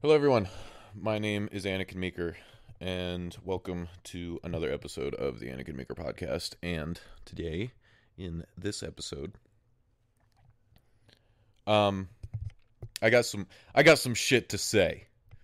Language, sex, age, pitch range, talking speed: English, male, 30-49, 95-115 Hz, 125 wpm